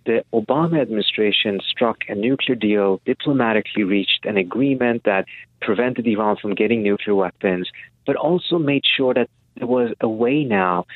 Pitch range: 100-125 Hz